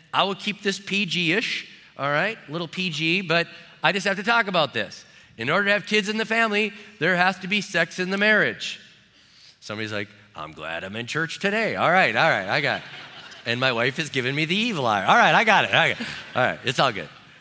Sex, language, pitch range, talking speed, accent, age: male, English, 135-190 Hz, 245 wpm, American, 30-49